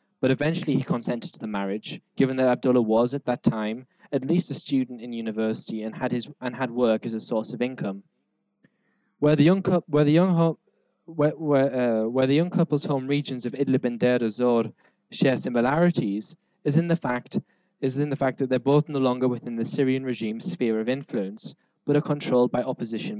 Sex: male